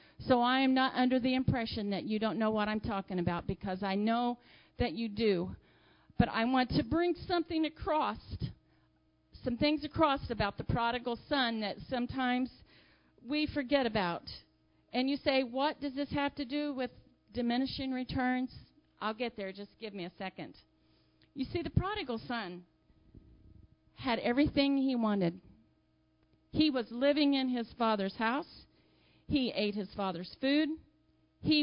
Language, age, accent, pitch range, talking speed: English, 40-59, American, 205-265 Hz, 155 wpm